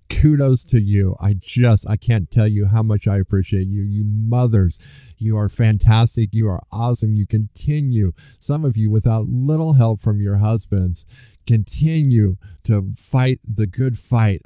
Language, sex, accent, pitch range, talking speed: English, male, American, 95-115 Hz, 160 wpm